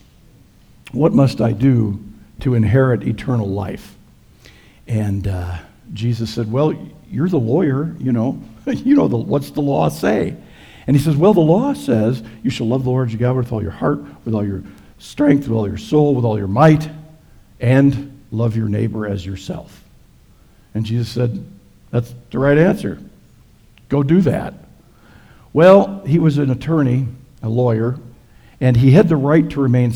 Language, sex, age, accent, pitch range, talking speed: English, male, 60-79, American, 110-140 Hz, 170 wpm